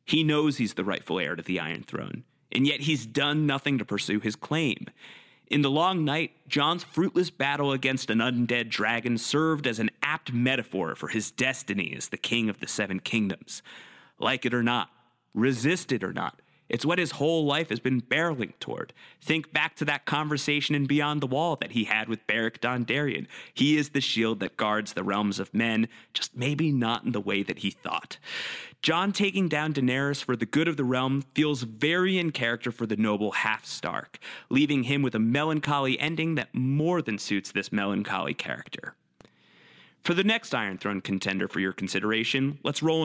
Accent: American